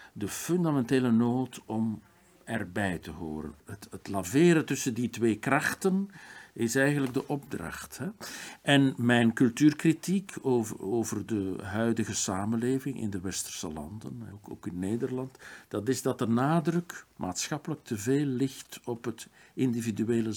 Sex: male